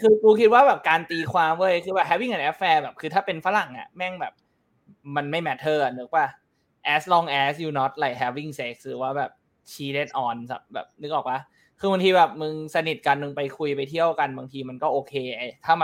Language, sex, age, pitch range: Thai, male, 20-39, 135-165 Hz